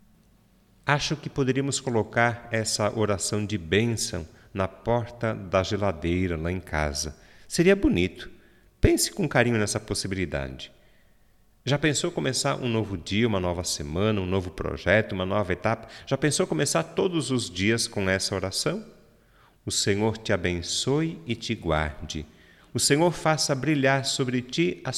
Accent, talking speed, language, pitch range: Brazilian, 145 wpm, Portuguese, 95-135 Hz